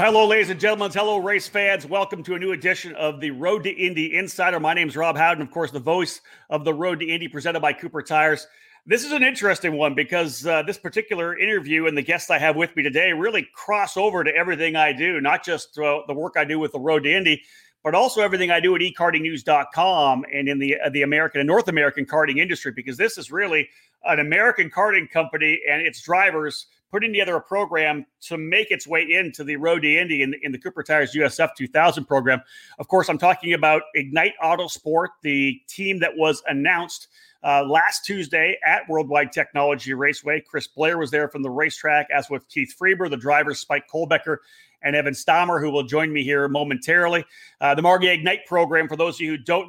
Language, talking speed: English, 215 wpm